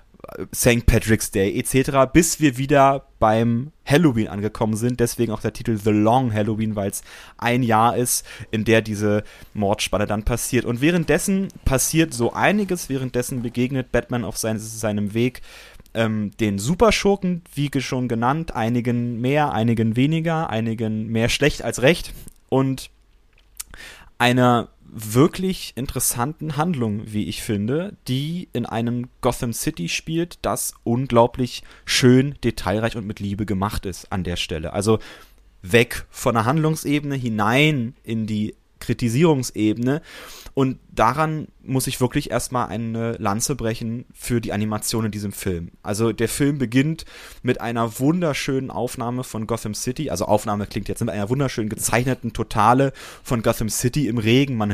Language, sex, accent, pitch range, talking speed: German, male, German, 110-135 Hz, 145 wpm